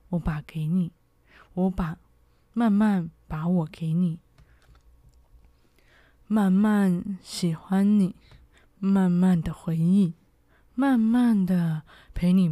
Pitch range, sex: 165-195 Hz, female